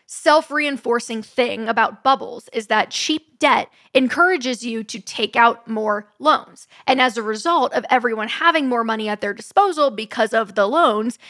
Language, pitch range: English, 220-275 Hz